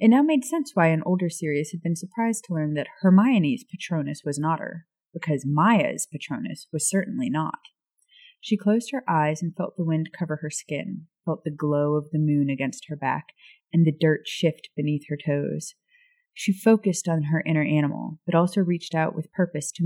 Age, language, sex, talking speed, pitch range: 30-49, English, female, 195 wpm, 155-195 Hz